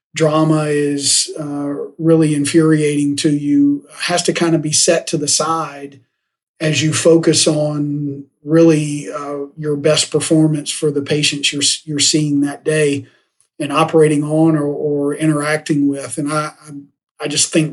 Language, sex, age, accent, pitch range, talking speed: English, male, 40-59, American, 145-165 Hz, 150 wpm